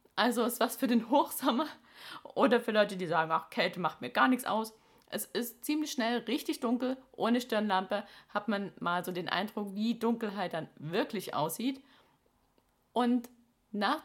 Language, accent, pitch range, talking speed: German, German, 195-245 Hz, 165 wpm